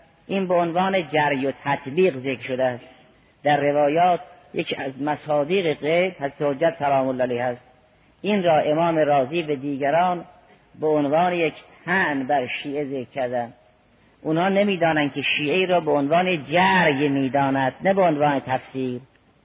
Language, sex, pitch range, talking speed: Persian, female, 140-175 Hz, 150 wpm